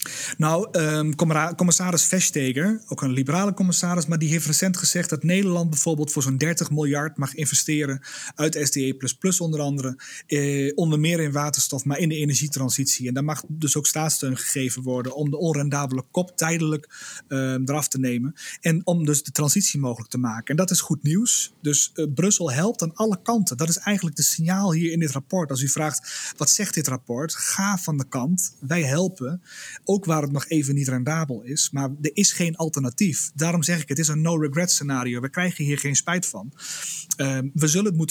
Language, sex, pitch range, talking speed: Dutch, male, 145-175 Hz, 190 wpm